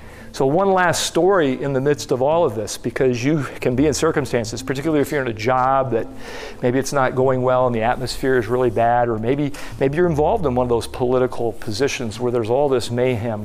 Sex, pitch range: male, 115-140 Hz